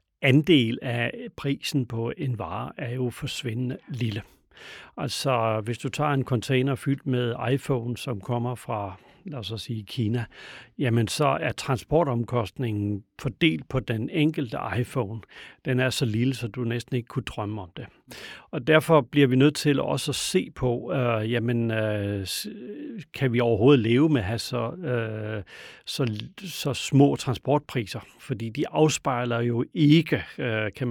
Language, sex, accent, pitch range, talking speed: Danish, male, native, 110-135 Hz, 145 wpm